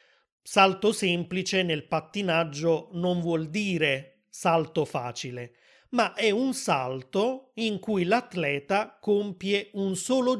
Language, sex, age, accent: Italian, male, 30-49, native